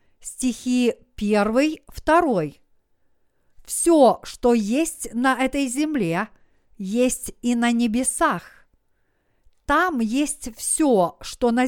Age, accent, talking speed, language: 50-69, native, 100 wpm, Russian